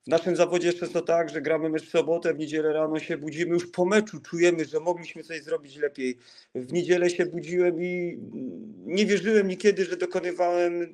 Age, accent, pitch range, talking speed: 40-59, native, 155-180 Hz, 190 wpm